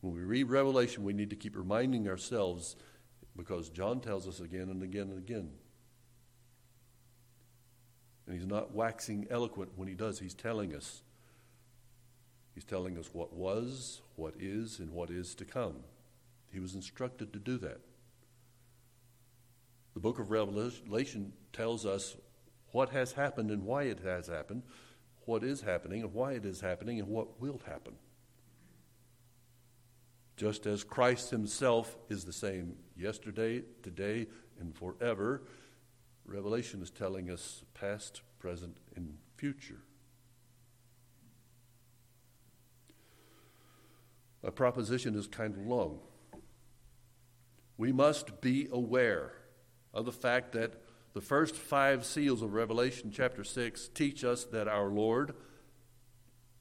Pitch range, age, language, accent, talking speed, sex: 105-120 Hz, 60-79, English, American, 125 wpm, male